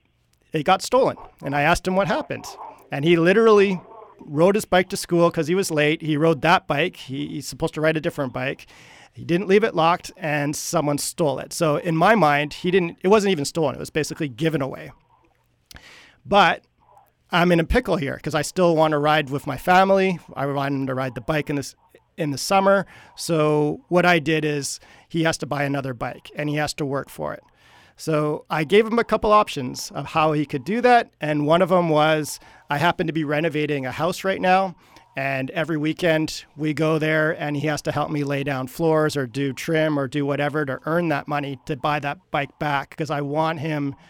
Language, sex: English, male